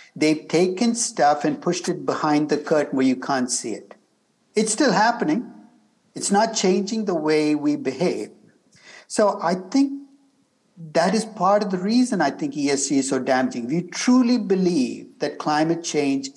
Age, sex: 60-79, male